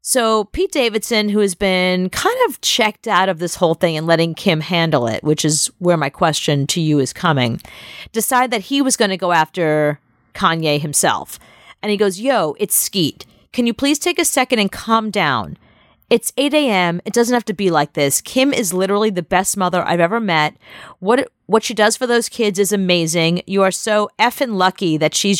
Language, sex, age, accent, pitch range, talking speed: English, female, 40-59, American, 170-235 Hz, 210 wpm